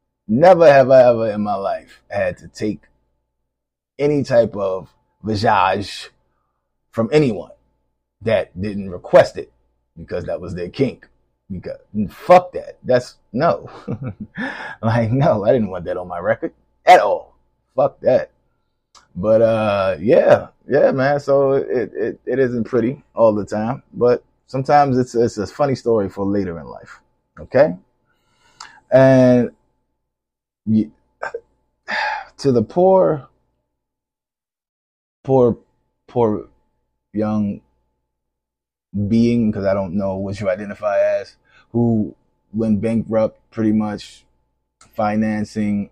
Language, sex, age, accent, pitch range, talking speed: English, male, 20-39, American, 100-125 Hz, 120 wpm